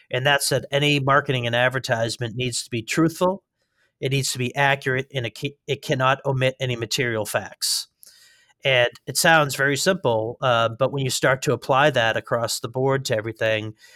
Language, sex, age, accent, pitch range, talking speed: English, male, 40-59, American, 120-145 Hz, 175 wpm